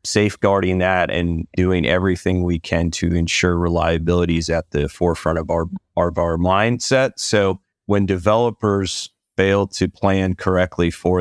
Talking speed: 150 wpm